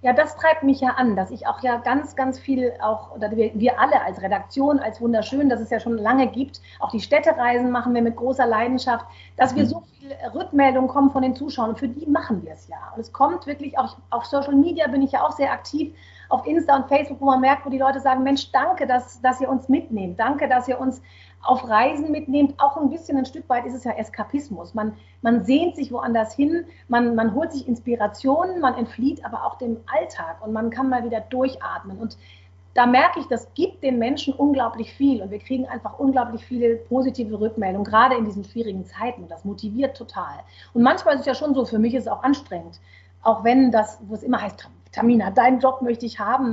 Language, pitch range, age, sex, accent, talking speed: German, 225-275 Hz, 40-59, female, German, 225 wpm